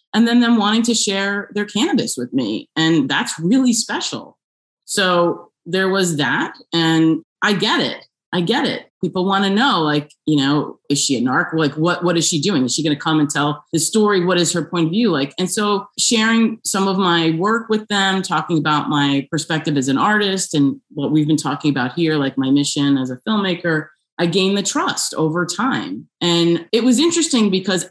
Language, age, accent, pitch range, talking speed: English, 30-49, American, 145-200 Hz, 210 wpm